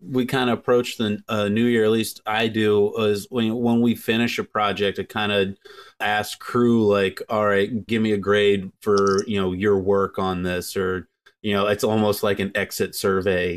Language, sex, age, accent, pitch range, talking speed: English, male, 30-49, American, 95-115 Hz, 210 wpm